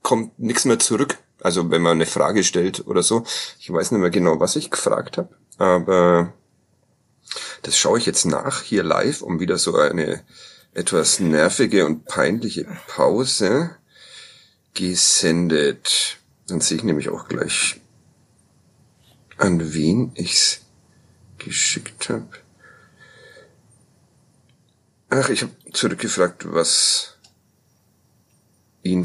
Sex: male